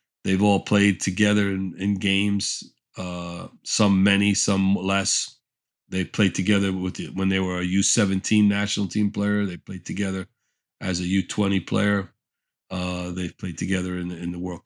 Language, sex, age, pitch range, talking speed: English, male, 40-59, 95-105 Hz, 170 wpm